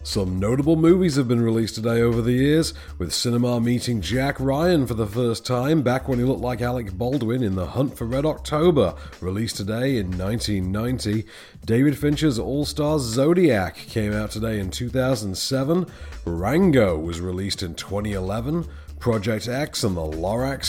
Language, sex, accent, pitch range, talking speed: English, male, British, 100-145 Hz, 160 wpm